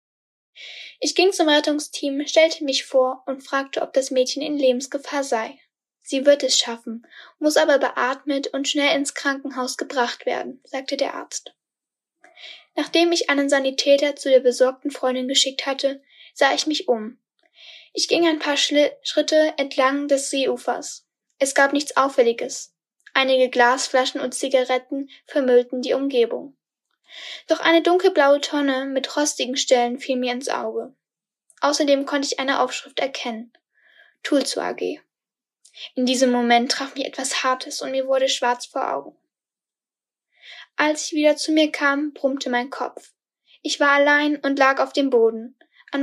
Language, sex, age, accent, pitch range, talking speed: German, female, 10-29, German, 260-300 Hz, 150 wpm